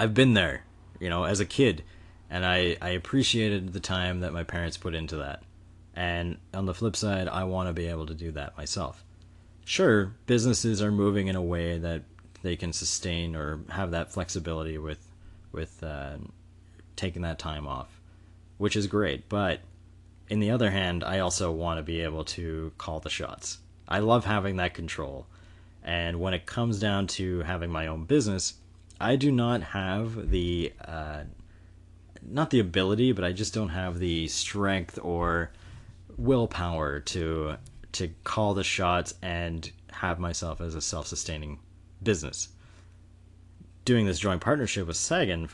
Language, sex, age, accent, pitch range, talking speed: English, male, 30-49, American, 85-100 Hz, 165 wpm